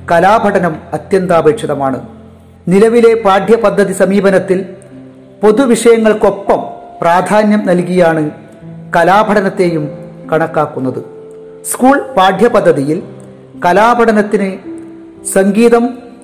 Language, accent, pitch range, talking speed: Malayalam, native, 160-220 Hz, 50 wpm